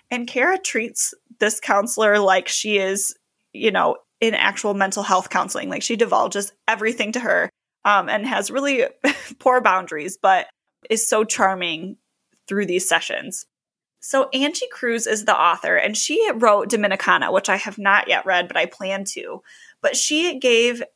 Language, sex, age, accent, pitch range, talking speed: English, female, 20-39, American, 195-255 Hz, 165 wpm